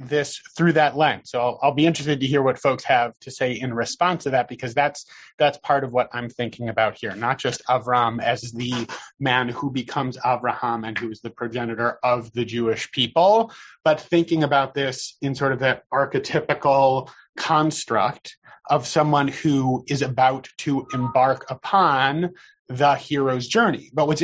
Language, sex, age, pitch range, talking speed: English, male, 30-49, 120-150 Hz, 175 wpm